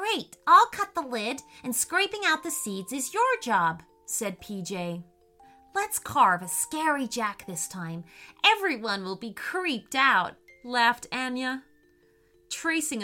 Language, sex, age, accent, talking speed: English, female, 30-49, American, 140 wpm